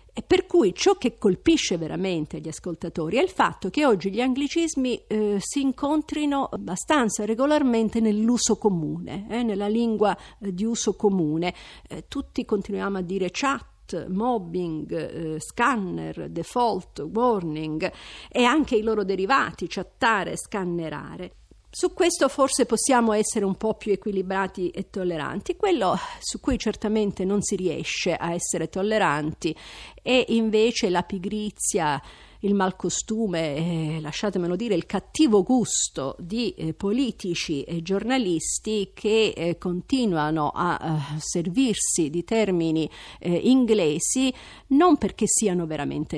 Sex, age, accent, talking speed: female, 50-69, native, 130 wpm